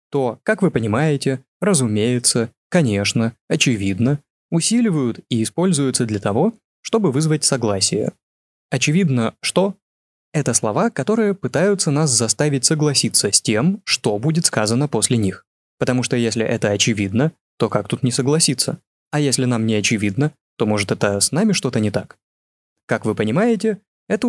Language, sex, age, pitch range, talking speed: Russian, male, 20-39, 115-160 Hz, 145 wpm